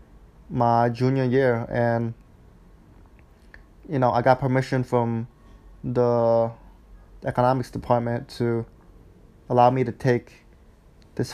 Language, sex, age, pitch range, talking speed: English, male, 20-39, 115-130 Hz, 100 wpm